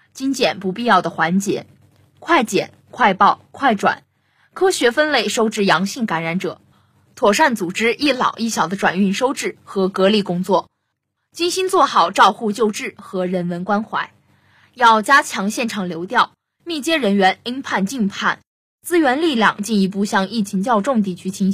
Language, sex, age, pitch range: Chinese, female, 20-39, 185-240 Hz